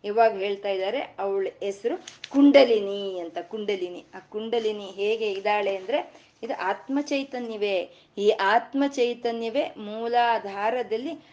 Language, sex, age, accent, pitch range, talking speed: Kannada, female, 30-49, native, 205-265 Hz, 100 wpm